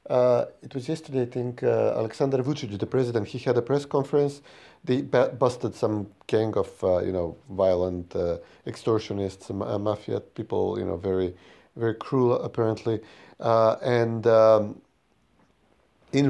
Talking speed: 150 wpm